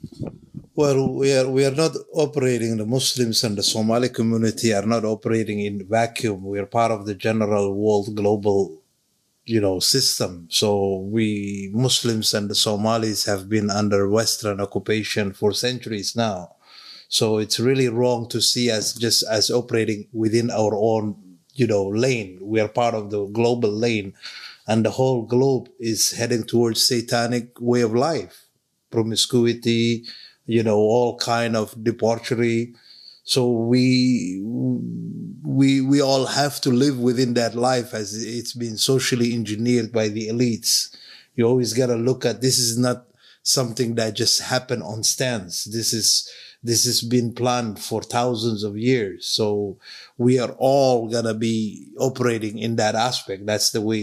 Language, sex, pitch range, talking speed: English, male, 110-125 Hz, 155 wpm